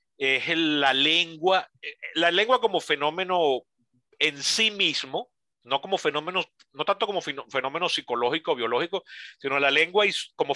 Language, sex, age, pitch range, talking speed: Spanish, male, 40-59, 135-200 Hz, 130 wpm